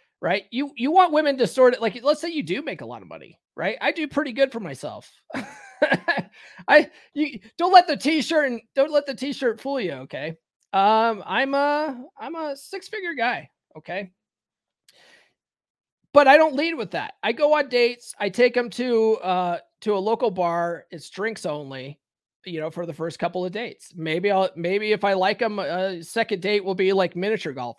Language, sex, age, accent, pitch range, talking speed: English, male, 30-49, American, 180-275 Hz, 200 wpm